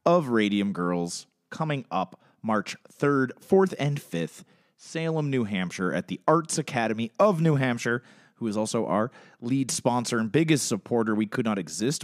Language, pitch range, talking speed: English, 100-135 Hz, 165 wpm